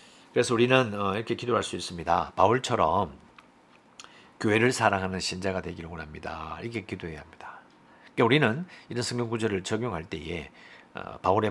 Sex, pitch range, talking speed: male, 90-120 Hz, 115 wpm